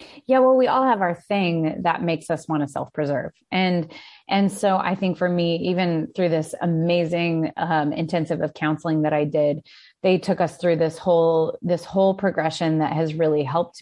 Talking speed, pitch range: 190 wpm, 160-190 Hz